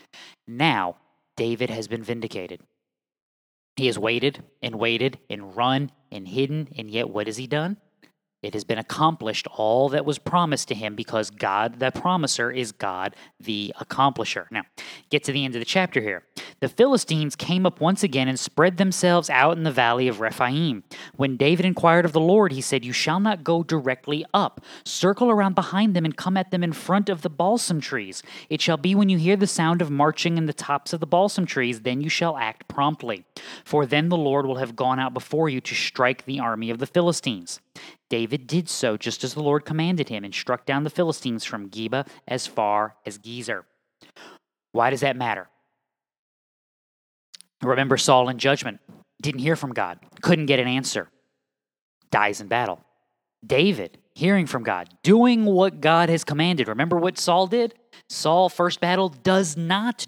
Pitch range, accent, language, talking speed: 125-175 Hz, American, English, 185 wpm